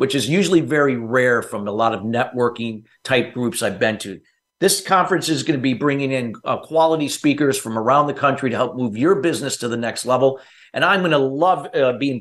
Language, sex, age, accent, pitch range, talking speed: English, male, 50-69, American, 120-160 Hz, 215 wpm